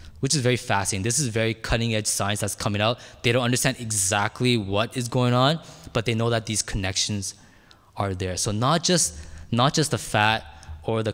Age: 20-39